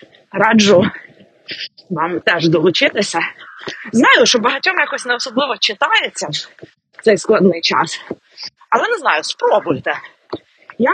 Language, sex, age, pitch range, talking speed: Ukrainian, female, 30-49, 185-240 Hz, 105 wpm